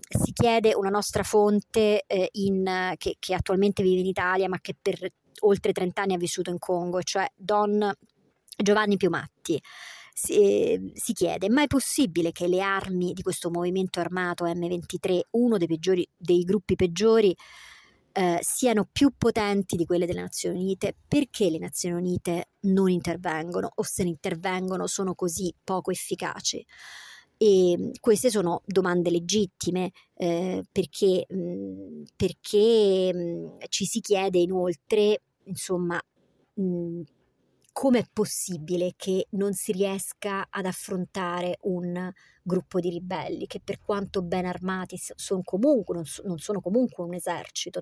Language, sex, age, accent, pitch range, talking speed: Italian, male, 30-49, native, 175-200 Hz, 130 wpm